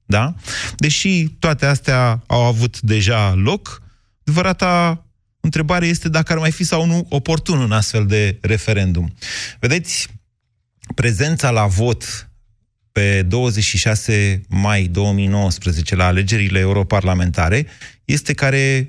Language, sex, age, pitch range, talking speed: Romanian, male, 30-49, 105-155 Hz, 110 wpm